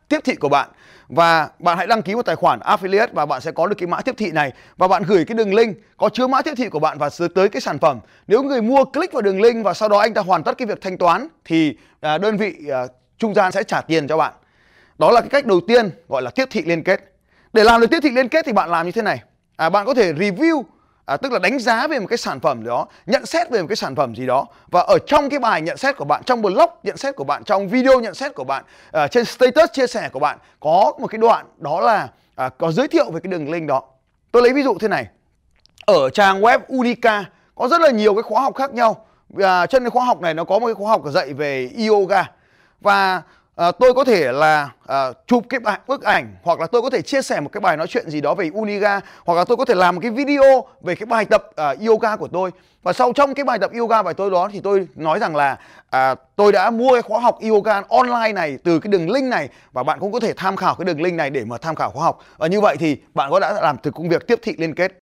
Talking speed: 275 wpm